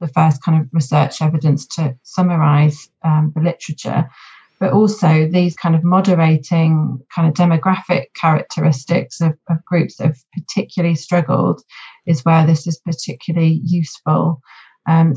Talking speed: 140 wpm